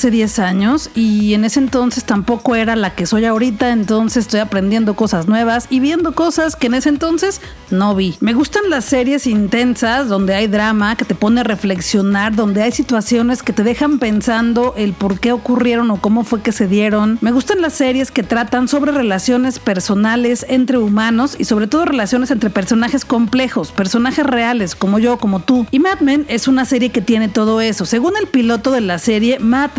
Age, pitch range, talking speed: 40-59, 215-255 Hz, 195 wpm